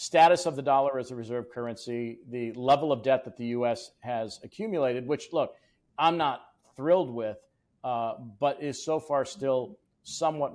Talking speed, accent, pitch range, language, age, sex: 170 wpm, American, 120-140 Hz, English, 50-69, male